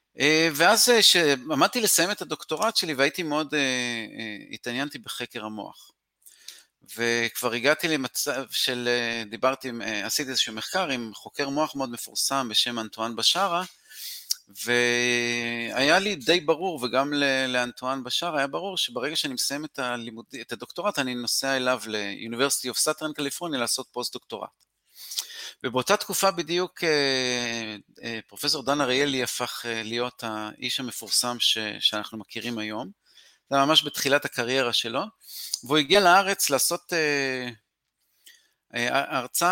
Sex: male